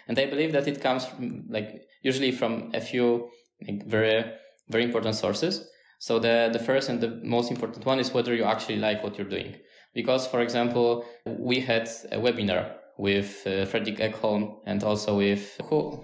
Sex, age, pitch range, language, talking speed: male, 20-39, 110-130 Hz, Slovak, 180 wpm